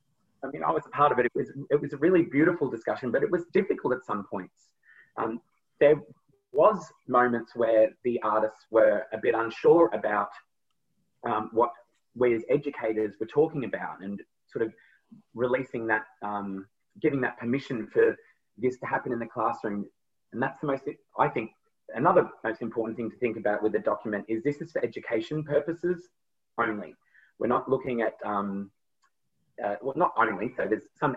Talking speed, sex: 180 wpm, male